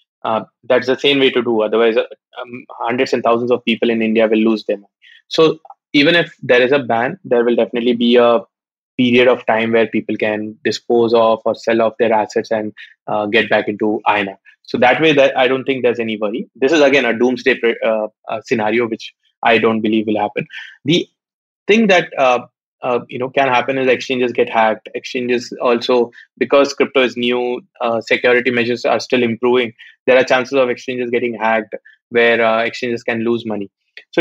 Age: 20-39